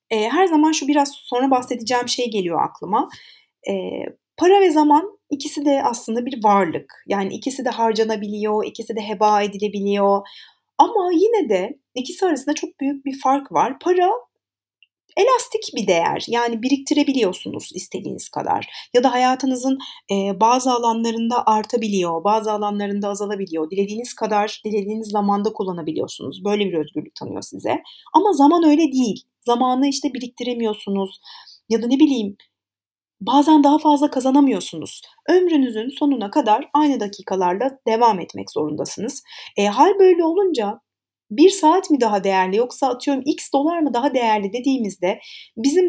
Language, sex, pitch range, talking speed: Turkish, female, 210-310 Hz, 135 wpm